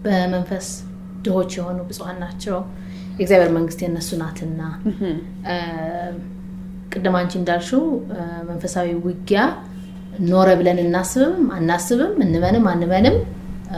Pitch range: 170-185 Hz